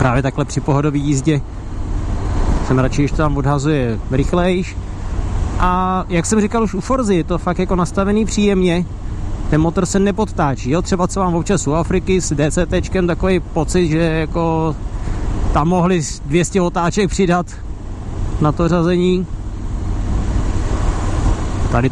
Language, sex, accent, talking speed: Czech, male, native, 135 wpm